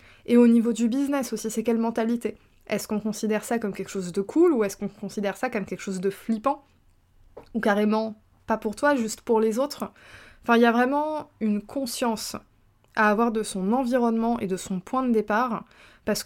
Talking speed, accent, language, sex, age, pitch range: 205 wpm, French, French, female, 20-39, 205-255 Hz